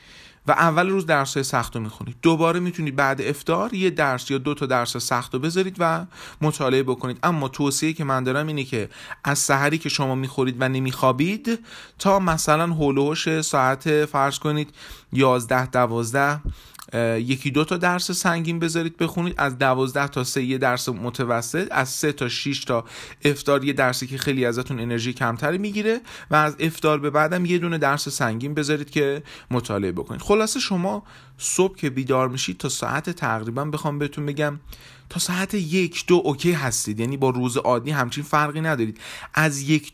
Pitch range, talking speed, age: 130-160 Hz, 170 wpm, 30-49